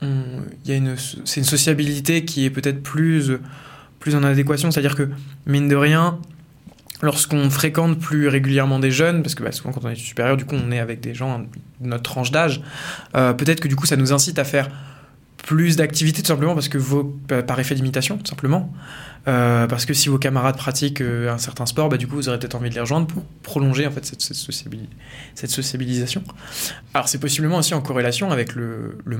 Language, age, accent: French, 20-39, French